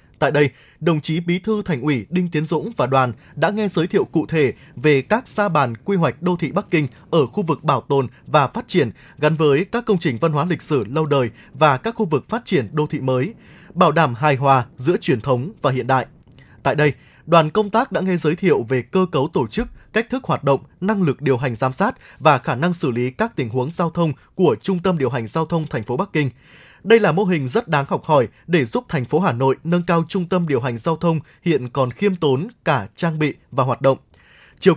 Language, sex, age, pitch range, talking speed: Vietnamese, male, 20-39, 135-185 Hz, 250 wpm